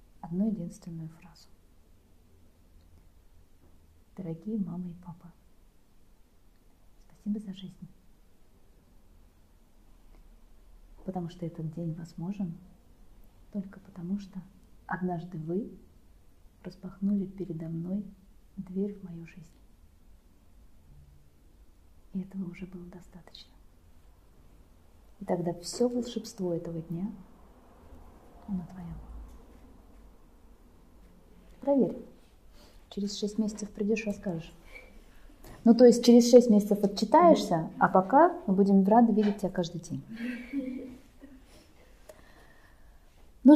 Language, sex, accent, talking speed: Russian, female, native, 90 wpm